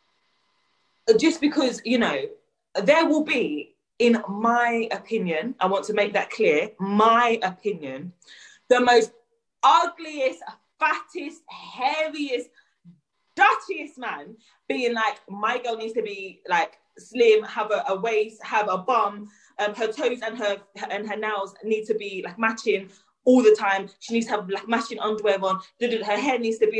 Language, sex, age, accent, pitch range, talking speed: English, female, 20-39, British, 205-285 Hz, 160 wpm